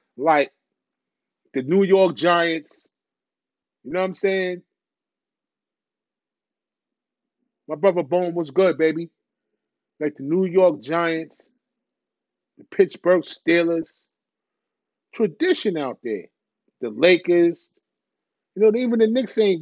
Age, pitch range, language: 30-49, 160-210 Hz, English